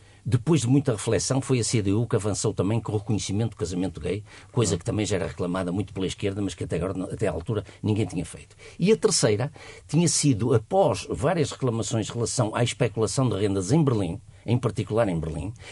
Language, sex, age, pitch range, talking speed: Portuguese, male, 50-69, 110-155 Hz, 210 wpm